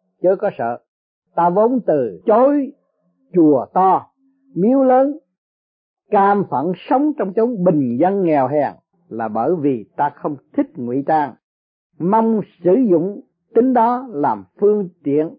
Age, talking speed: 50-69, 140 wpm